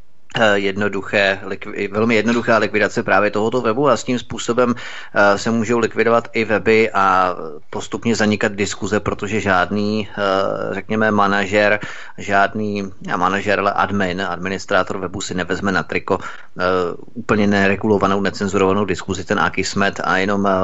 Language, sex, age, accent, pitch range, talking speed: Czech, male, 30-49, native, 95-115 Hz, 125 wpm